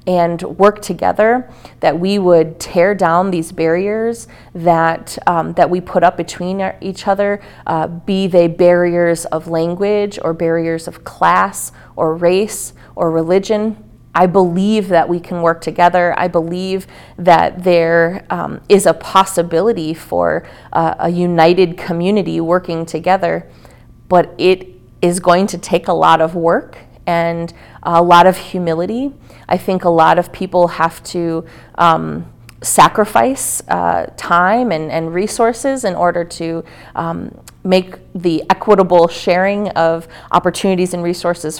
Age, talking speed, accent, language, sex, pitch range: 30-49, 140 wpm, American, English, female, 165-190 Hz